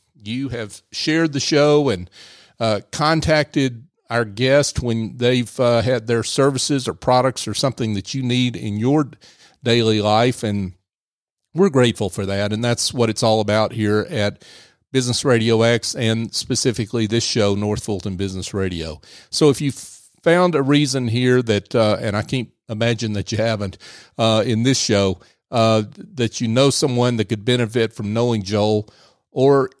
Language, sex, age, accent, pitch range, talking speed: English, male, 40-59, American, 105-130 Hz, 165 wpm